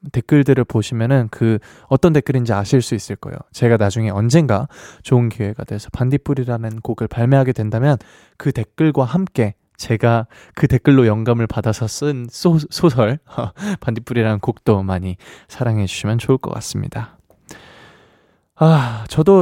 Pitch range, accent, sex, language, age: 110-155 Hz, native, male, Korean, 20-39